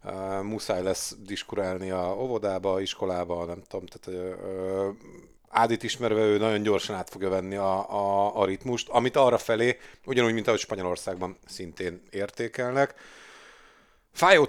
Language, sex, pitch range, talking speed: Hungarian, male, 95-120 Hz, 140 wpm